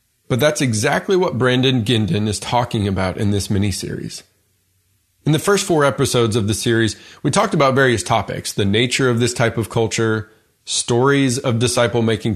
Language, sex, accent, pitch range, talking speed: English, male, American, 110-145 Hz, 170 wpm